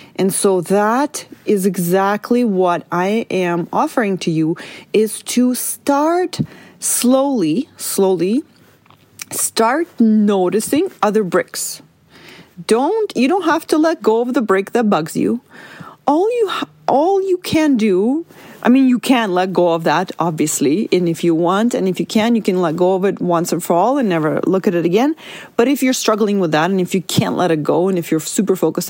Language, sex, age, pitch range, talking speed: English, female, 30-49, 185-255 Hz, 185 wpm